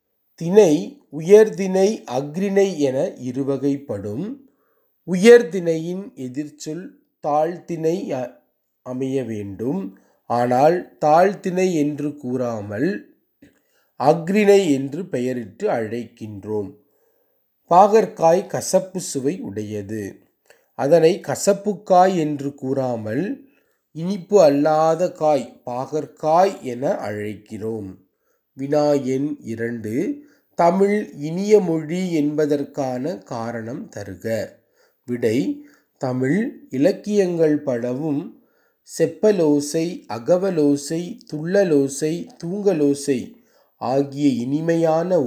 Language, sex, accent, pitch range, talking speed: Tamil, male, native, 130-185 Hz, 65 wpm